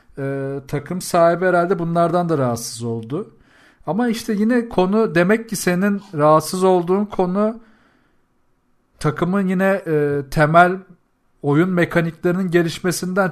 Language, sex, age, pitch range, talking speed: Turkish, male, 40-59, 140-180 Hz, 115 wpm